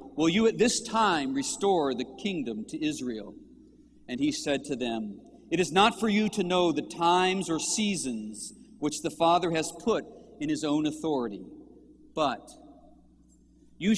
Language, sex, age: English, male, 40-59